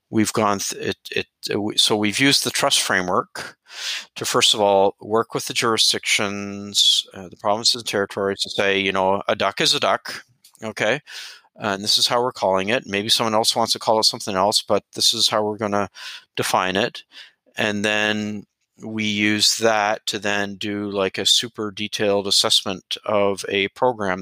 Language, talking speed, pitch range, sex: English, 190 wpm, 100-125 Hz, male